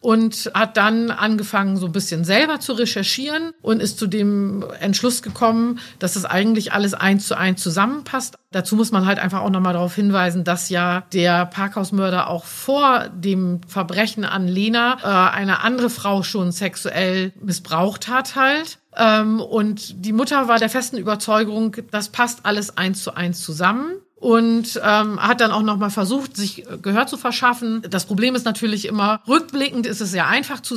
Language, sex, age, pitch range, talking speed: German, female, 50-69, 185-230 Hz, 175 wpm